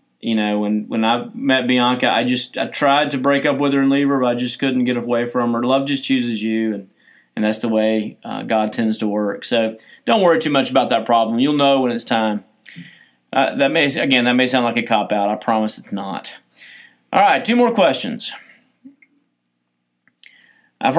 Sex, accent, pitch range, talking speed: male, American, 125-175 Hz, 210 wpm